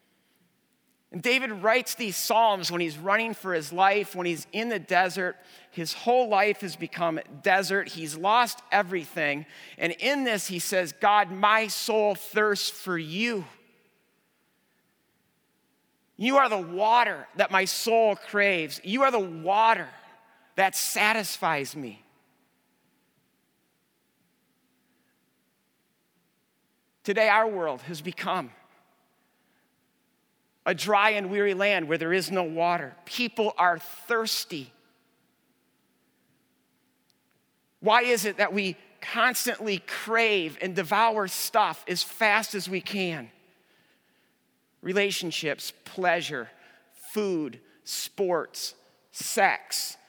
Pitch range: 175-215 Hz